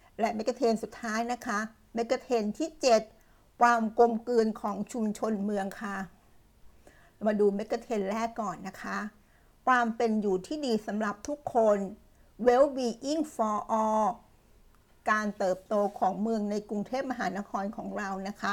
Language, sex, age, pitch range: Thai, female, 60-79, 210-245 Hz